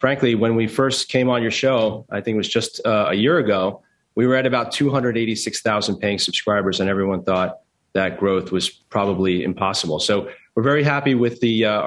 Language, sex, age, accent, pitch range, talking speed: English, male, 30-49, American, 110-130 Hz, 195 wpm